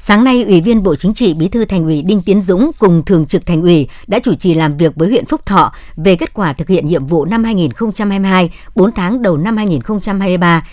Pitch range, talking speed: 165-220 Hz, 235 wpm